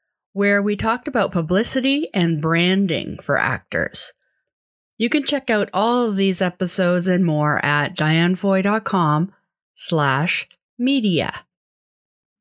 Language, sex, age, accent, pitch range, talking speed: English, female, 30-49, American, 155-200 Hz, 110 wpm